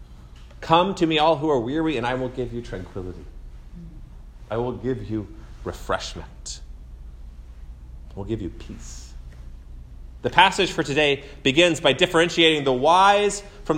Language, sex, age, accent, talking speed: English, male, 30-49, American, 145 wpm